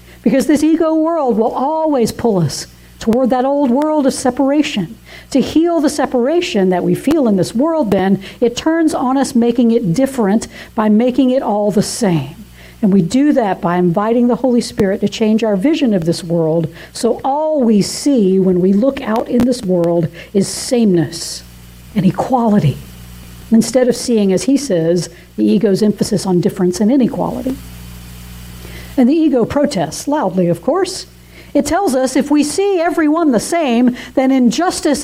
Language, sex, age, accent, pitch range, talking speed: English, female, 60-79, American, 175-285 Hz, 170 wpm